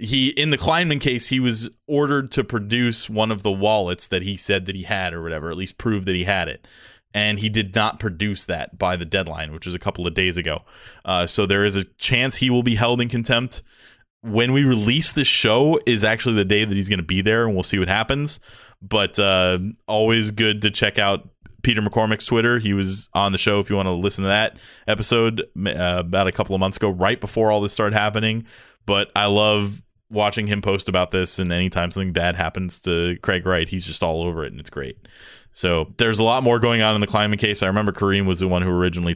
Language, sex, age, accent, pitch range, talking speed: English, male, 20-39, American, 90-110 Hz, 240 wpm